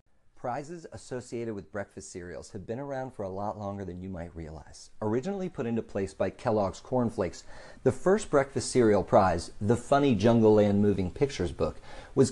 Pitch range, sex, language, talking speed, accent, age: 100-130 Hz, male, English, 180 wpm, American, 40-59